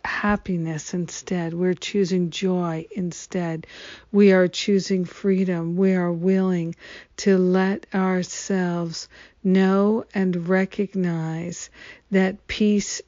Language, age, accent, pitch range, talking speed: English, 50-69, American, 175-195 Hz, 95 wpm